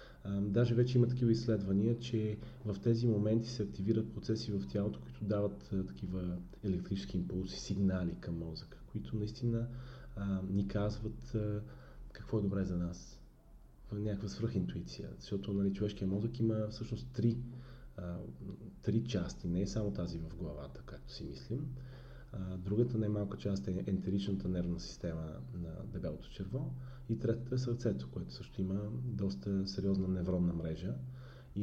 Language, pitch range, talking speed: Bulgarian, 90-115 Hz, 140 wpm